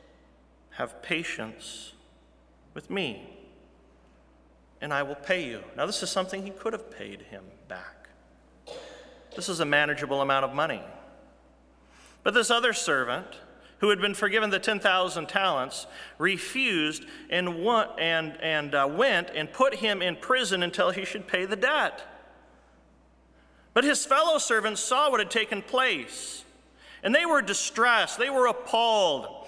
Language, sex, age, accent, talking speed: English, male, 40-59, American, 135 wpm